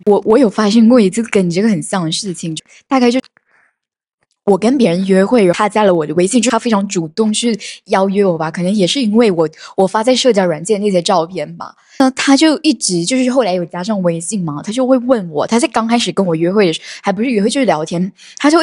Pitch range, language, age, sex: 195-270 Hz, Chinese, 10-29, female